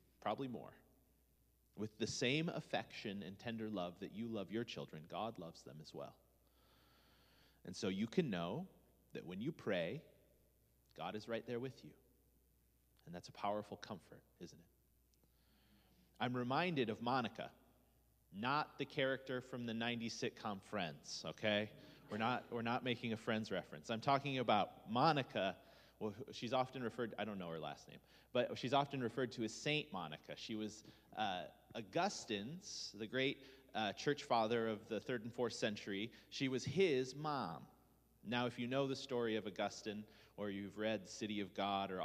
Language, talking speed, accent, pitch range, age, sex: English, 165 wpm, American, 100-130 Hz, 30-49, male